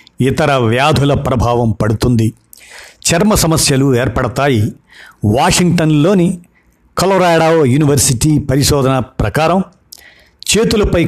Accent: native